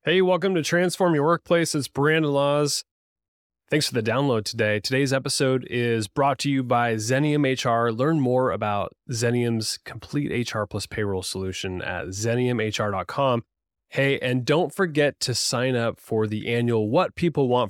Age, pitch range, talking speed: 20-39, 105-140 Hz, 160 wpm